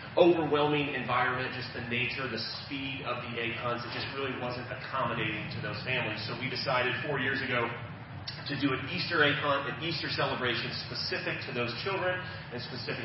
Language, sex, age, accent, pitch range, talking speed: English, male, 30-49, American, 115-135 Hz, 185 wpm